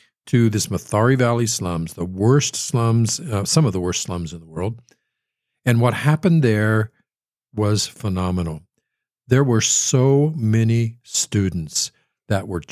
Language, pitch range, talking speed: English, 95-120 Hz, 140 wpm